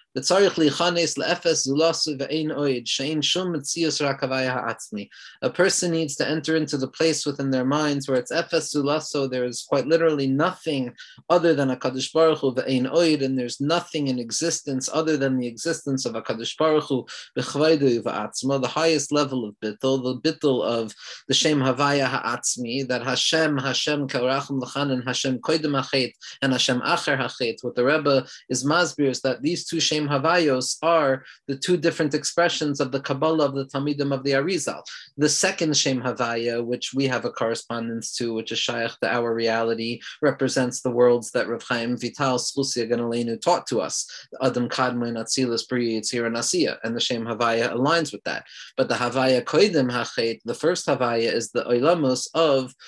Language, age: English, 30-49